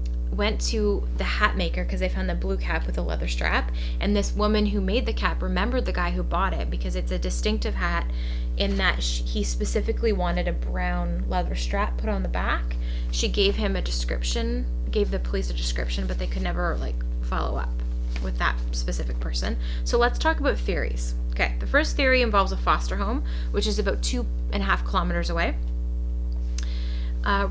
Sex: female